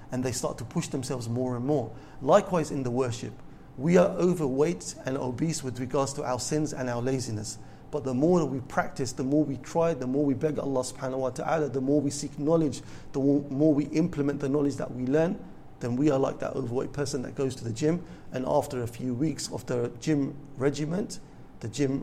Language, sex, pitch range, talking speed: English, male, 125-145 Hz, 220 wpm